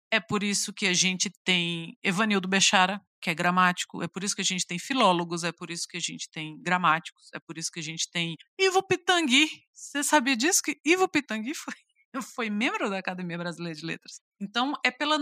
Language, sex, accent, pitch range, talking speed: Portuguese, female, Brazilian, 190-295 Hz, 215 wpm